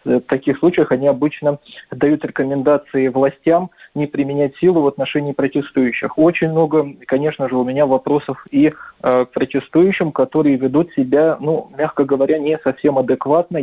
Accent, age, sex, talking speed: native, 20-39, male, 145 wpm